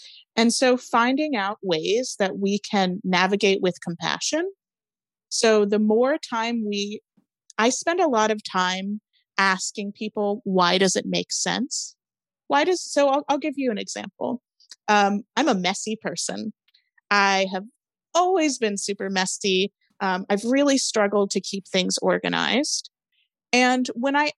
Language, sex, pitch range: English, female, 200-250 Hz